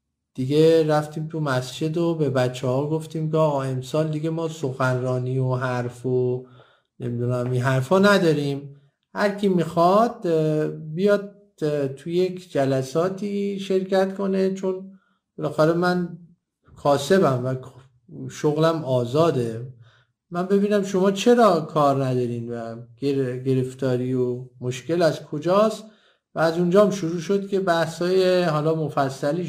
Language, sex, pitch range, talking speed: Persian, male, 130-170 Hz, 120 wpm